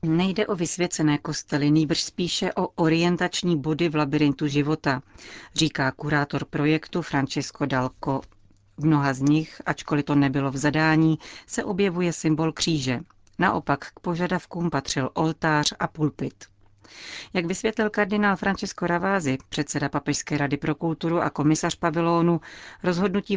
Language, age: Czech, 40-59